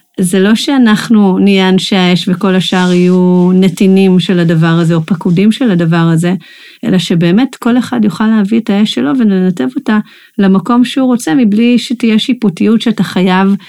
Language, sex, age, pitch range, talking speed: Hebrew, female, 40-59, 180-235 Hz, 160 wpm